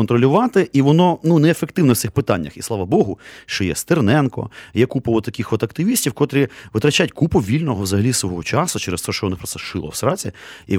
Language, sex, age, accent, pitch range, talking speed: Ukrainian, male, 30-49, native, 100-140 Hz, 195 wpm